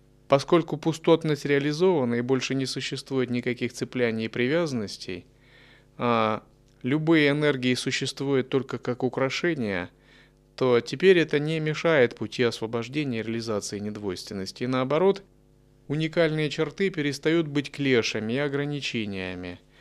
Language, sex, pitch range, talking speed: Russian, male, 125-155 Hz, 110 wpm